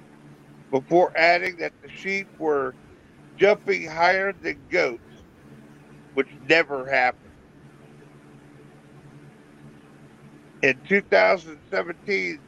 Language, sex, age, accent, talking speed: English, male, 50-69, American, 70 wpm